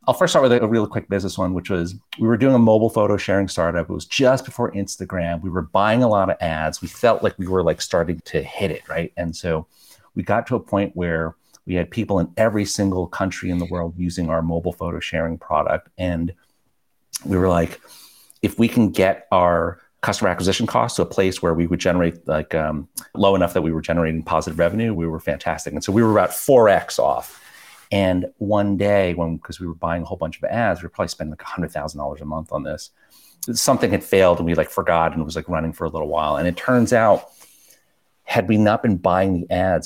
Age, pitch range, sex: 40-59, 85-100 Hz, male